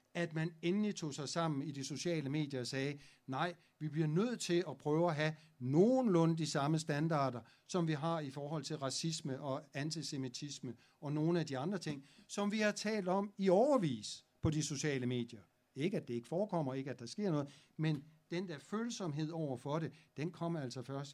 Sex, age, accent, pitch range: male, 60-79, native, 130-165 Hz